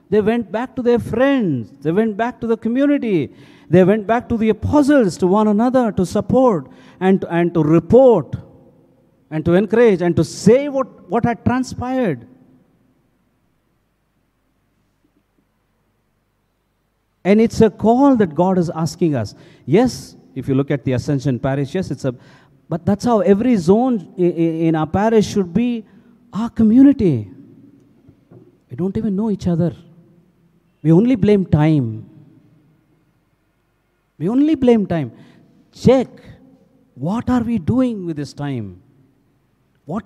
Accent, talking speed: Indian, 140 wpm